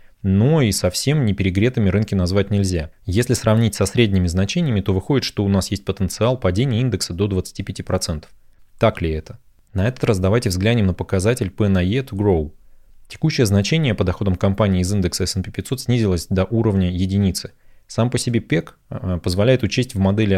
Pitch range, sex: 90-110 Hz, male